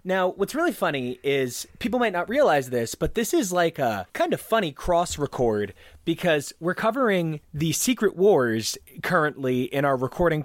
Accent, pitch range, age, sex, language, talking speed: American, 135-190 Hz, 30-49, male, English, 170 wpm